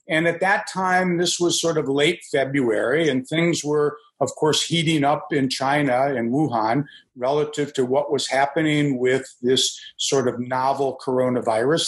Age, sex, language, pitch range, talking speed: 50-69, male, English, 135-165 Hz, 160 wpm